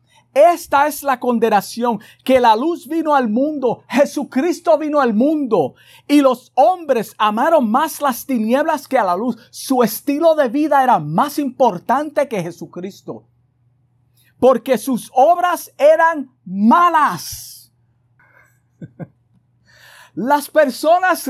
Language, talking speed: Spanish, 115 wpm